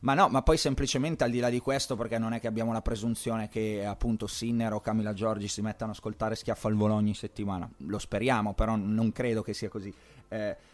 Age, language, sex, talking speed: 30-49, Italian, male, 230 wpm